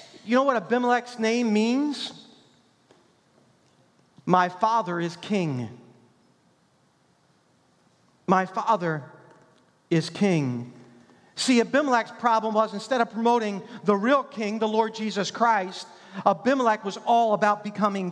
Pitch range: 195-250 Hz